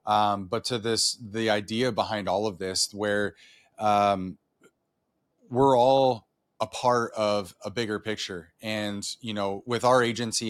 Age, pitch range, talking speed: 30-49, 105-120 Hz, 150 wpm